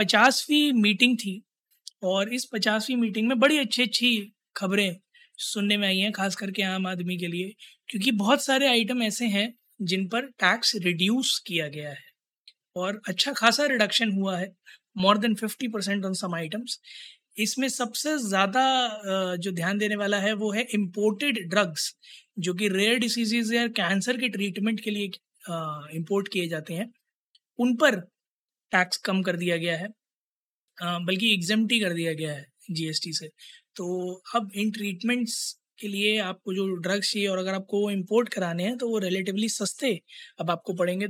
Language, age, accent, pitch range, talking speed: Hindi, 20-39, native, 185-225 Hz, 165 wpm